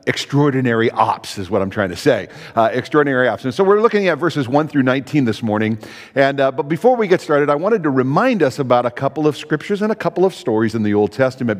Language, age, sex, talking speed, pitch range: English, 50-69, male, 250 wpm, 115-165 Hz